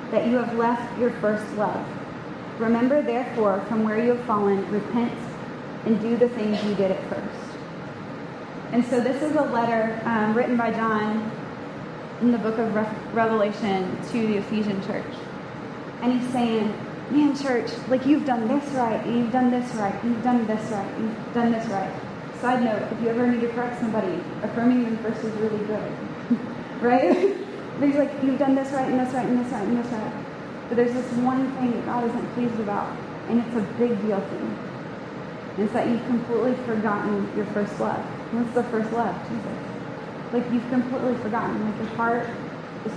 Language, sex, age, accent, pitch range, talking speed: English, female, 20-39, American, 215-245 Hz, 190 wpm